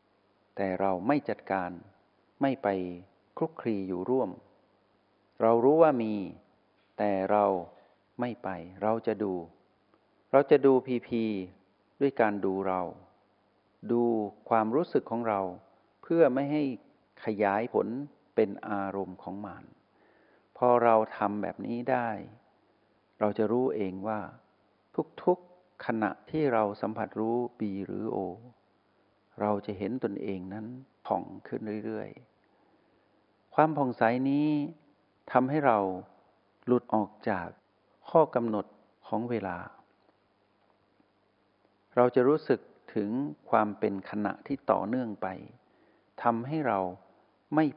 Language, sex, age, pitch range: Thai, male, 60-79, 95-125 Hz